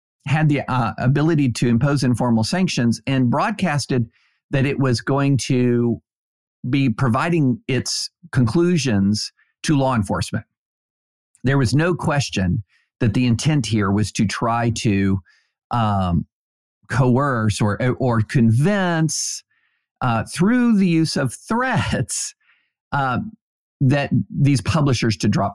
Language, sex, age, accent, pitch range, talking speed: English, male, 50-69, American, 105-135 Hz, 120 wpm